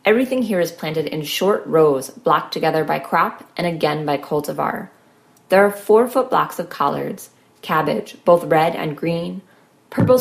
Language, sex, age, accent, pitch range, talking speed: English, female, 20-39, American, 150-195 Hz, 165 wpm